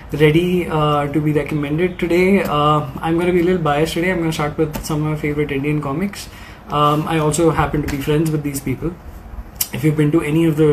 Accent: Indian